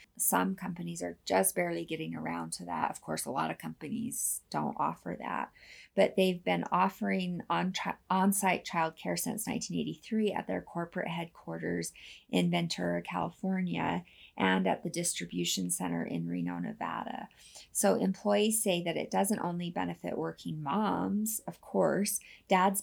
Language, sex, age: English, female, 30-49